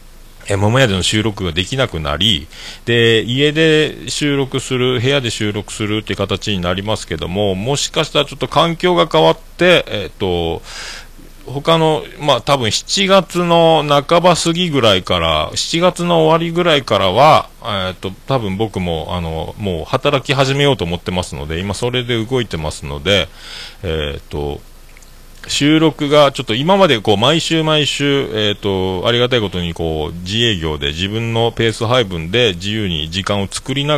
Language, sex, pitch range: Japanese, male, 95-145 Hz